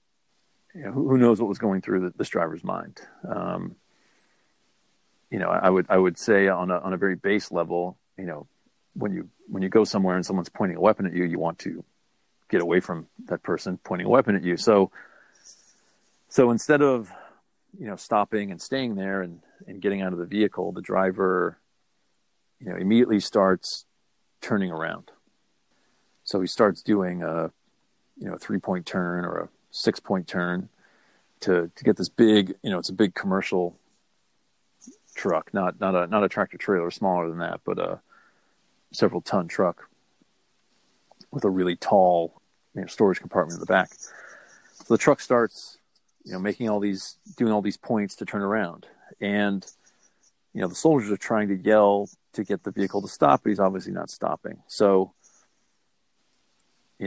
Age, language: 40-59, English